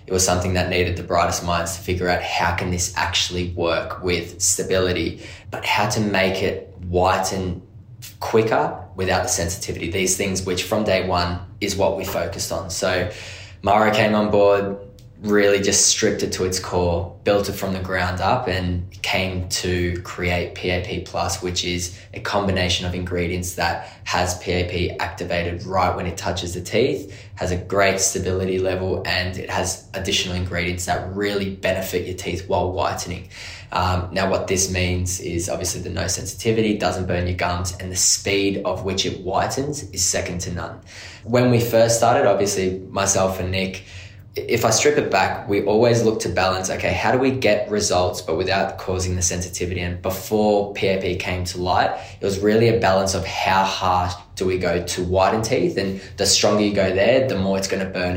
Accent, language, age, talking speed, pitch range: Australian, English, 10-29, 190 wpm, 90-100 Hz